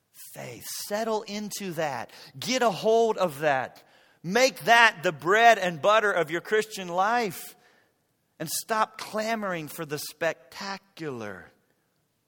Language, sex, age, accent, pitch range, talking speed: English, male, 40-59, American, 140-210 Hz, 120 wpm